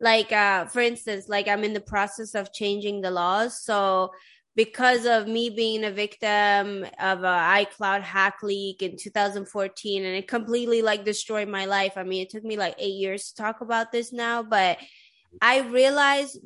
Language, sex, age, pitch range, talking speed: English, female, 20-39, 200-235 Hz, 180 wpm